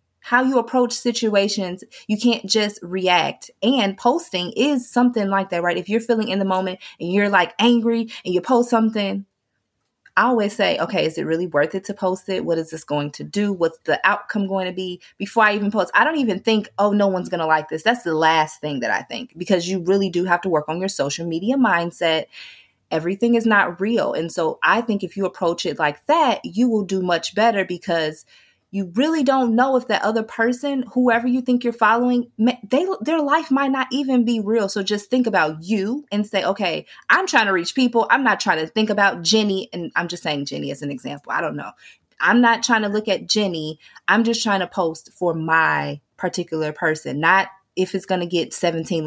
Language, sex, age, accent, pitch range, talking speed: English, female, 20-39, American, 170-230 Hz, 225 wpm